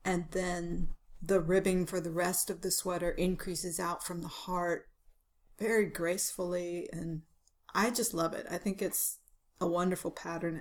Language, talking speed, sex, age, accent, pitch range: English, 160 wpm, female, 40-59, American, 175-205 Hz